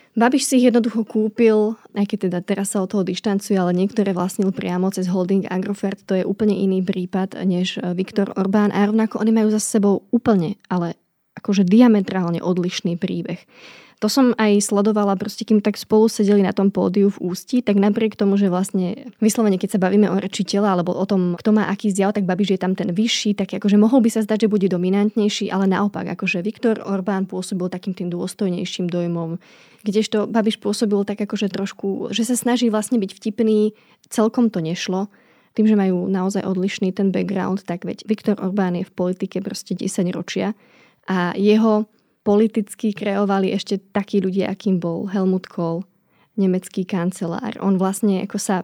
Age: 20-39